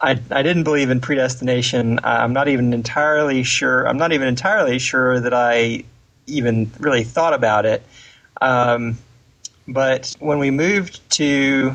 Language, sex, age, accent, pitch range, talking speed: English, male, 30-49, American, 120-140 Hz, 150 wpm